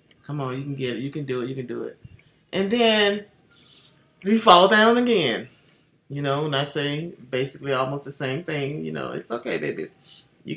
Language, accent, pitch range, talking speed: English, American, 150-225 Hz, 200 wpm